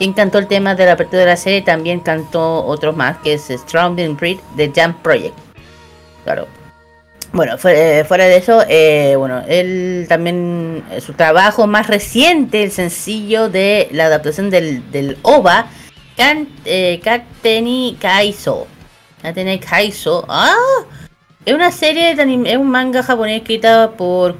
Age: 30-49